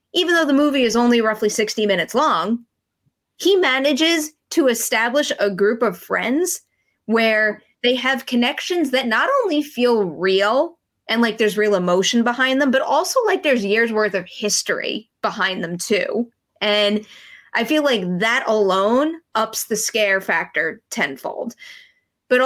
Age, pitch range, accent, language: 20-39, 205-250 Hz, American, English